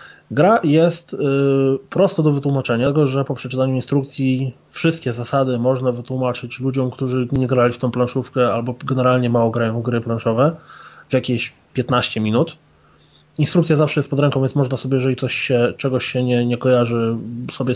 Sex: male